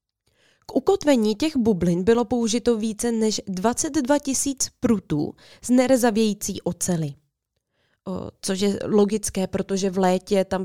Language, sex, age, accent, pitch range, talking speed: Czech, female, 20-39, native, 175-250 Hz, 125 wpm